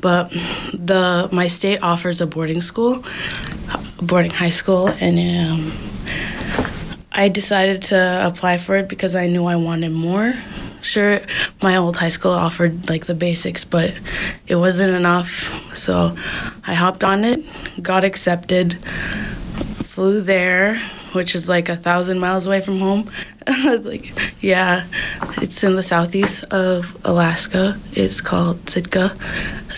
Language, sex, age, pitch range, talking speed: English, female, 20-39, 175-195 Hz, 140 wpm